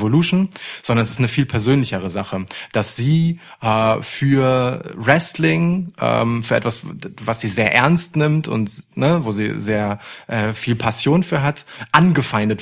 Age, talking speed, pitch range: 30-49, 145 wpm, 115-155 Hz